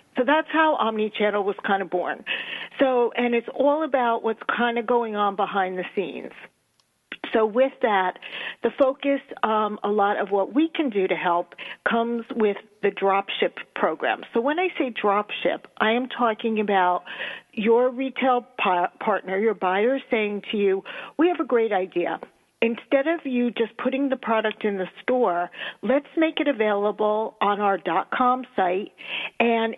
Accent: American